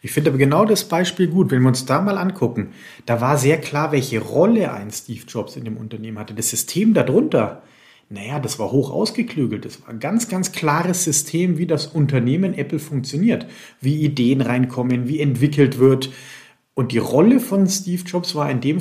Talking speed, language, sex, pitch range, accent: 195 wpm, German, male, 130-175 Hz, German